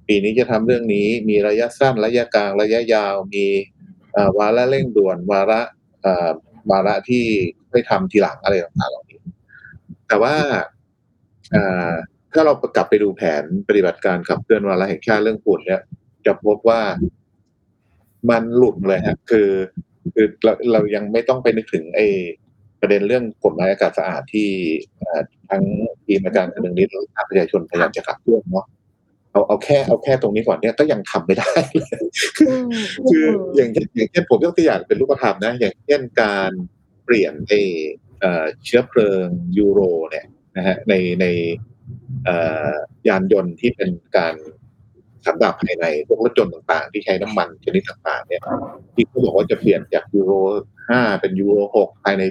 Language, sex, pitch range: Thai, male, 100-125 Hz